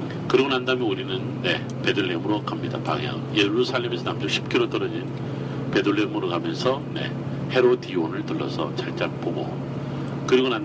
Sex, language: male, Korean